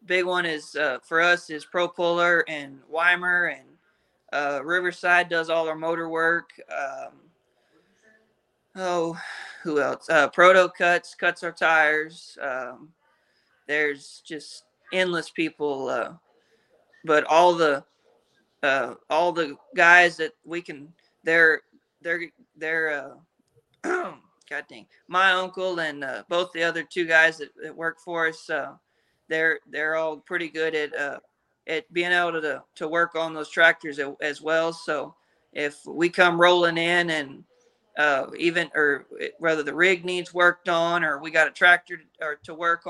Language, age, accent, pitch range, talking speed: English, 20-39, American, 155-175 Hz, 150 wpm